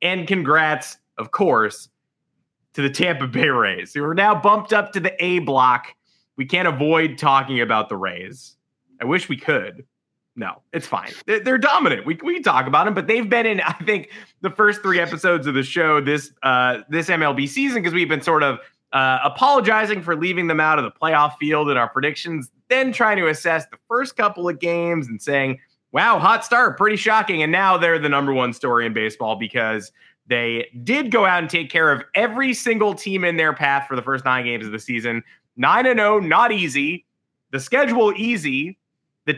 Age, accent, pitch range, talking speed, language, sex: 20-39, American, 140-200 Hz, 200 wpm, English, male